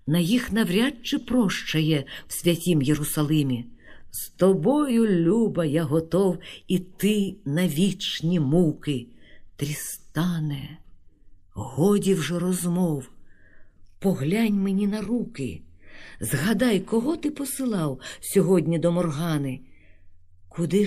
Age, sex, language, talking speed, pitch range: 50-69, female, Ukrainian, 95 wpm, 130-185 Hz